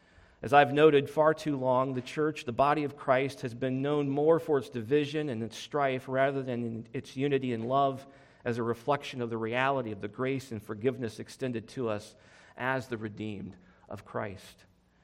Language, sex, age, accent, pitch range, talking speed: English, male, 40-59, American, 120-150 Hz, 190 wpm